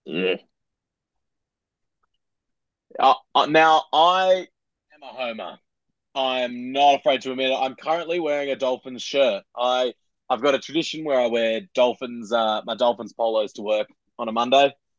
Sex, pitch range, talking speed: male, 125-165 Hz, 155 wpm